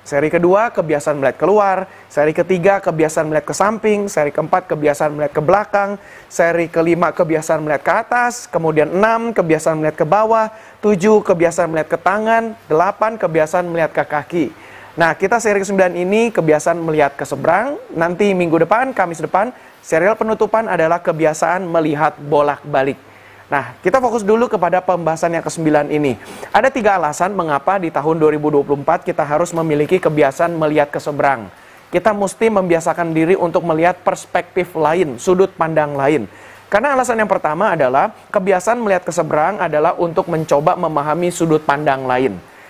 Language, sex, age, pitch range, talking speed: Indonesian, male, 30-49, 155-195 Hz, 155 wpm